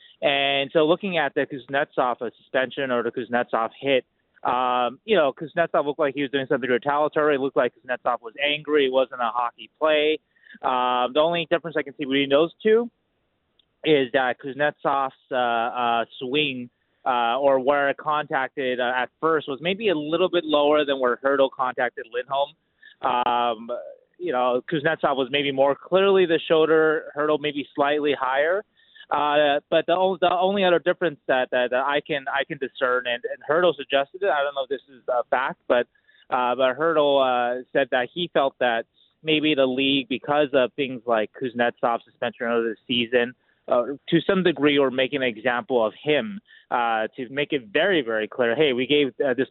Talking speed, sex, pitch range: 185 wpm, male, 125-160 Hz